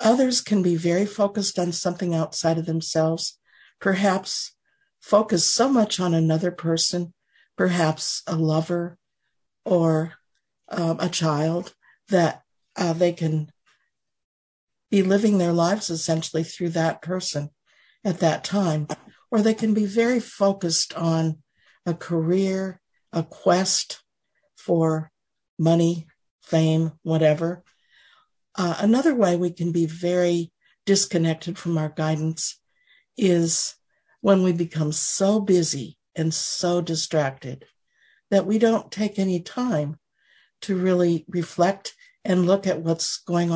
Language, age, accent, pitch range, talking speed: English, 60-79, American, 160-195 Hz, 120 wpm